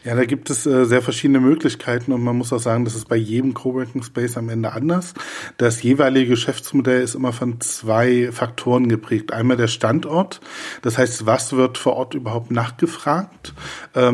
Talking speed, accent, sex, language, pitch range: 175 wpm, German, male, German, 115-135 Hz